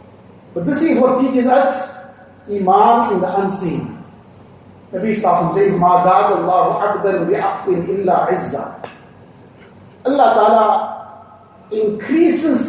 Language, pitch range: English, 195-250 Hz